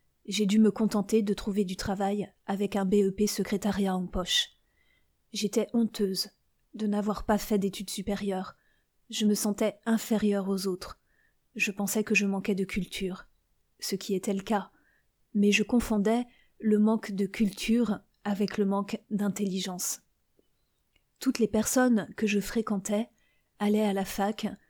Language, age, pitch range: French, 30-49, 195-220 Hz